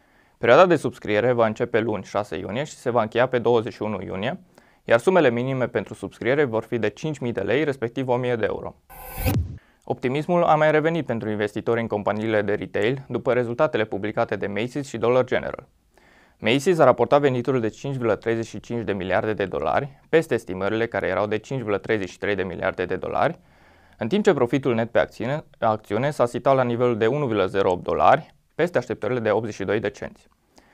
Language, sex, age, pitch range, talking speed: Romanian, male, 20-39, 110-135 Hz, 170 wpm